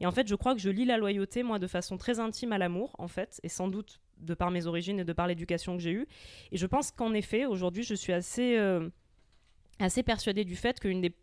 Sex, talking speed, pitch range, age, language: female, 260 wpm, 165-205 Hz, 20-39, French